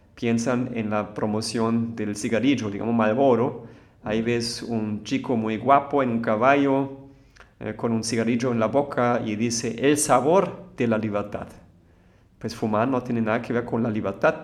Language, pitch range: Spanish, 110-130 Hz